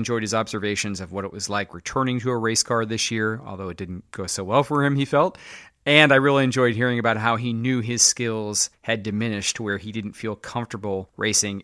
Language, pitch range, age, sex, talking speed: English, 105-130 Hz, 40-59, male, 230 wpm